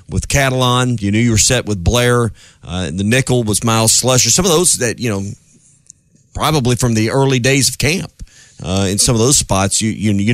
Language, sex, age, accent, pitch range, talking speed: English, male, 40-59, American, 110-140 Hz, 220 wpm